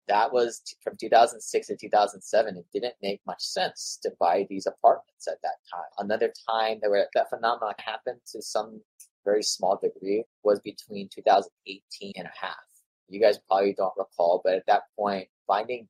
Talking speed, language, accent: 170 wpm, English, American